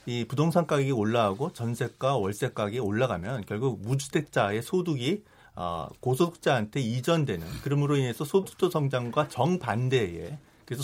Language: Korean